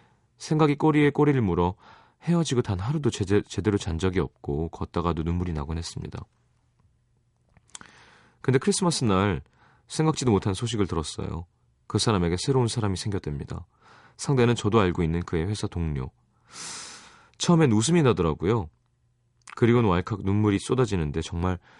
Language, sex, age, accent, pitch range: Korean, male, 30-49, native, 85-120 Hz